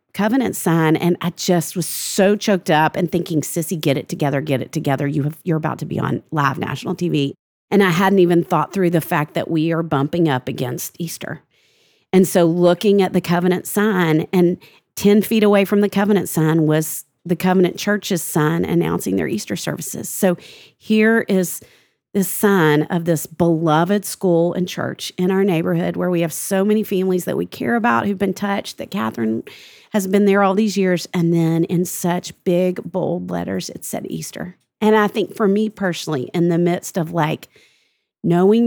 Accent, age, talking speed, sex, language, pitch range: American, 40-59, 195 wpm, female, English, 165-200 Hz